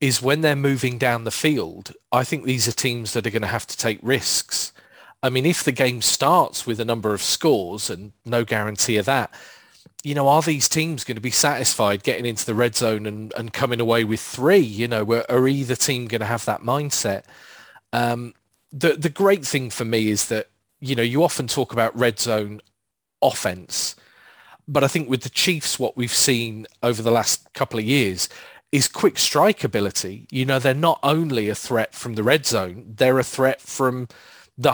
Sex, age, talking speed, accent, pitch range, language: male, 40-59, 205 wpm, British, 115-145 Hz, English